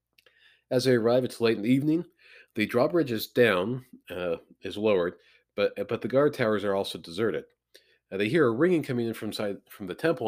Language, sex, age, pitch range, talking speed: English, male, 40-59, 95-125 Hz, 205 wpm